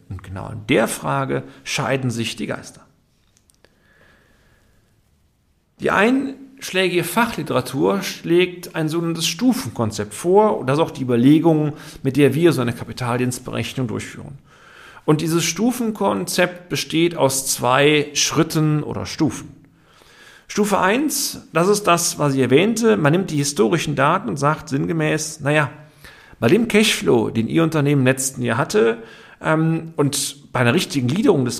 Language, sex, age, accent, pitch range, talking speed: German, male, 40-59, German, 125-180 Hz, 135 wpm